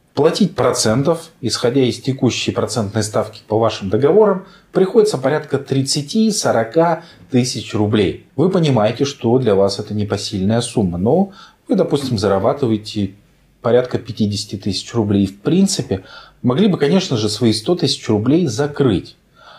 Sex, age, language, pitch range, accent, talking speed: male, 30-49, Russian, 105-155 Hz, native, 130 wpm